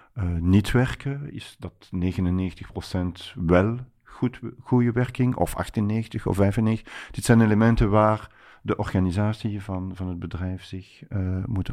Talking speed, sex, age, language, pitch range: 140 wpm, male, 50-69, Dutch, 95-115 Hz